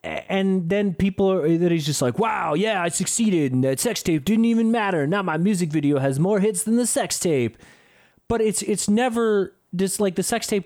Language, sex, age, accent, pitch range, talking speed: English, male, 30-49, American, 140-195 Hz, 220 wpm